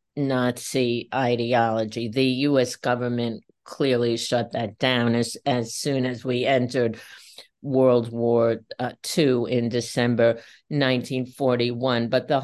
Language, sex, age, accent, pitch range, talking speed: English, female, 50-69, American, 125-165 Hz, 115 wpm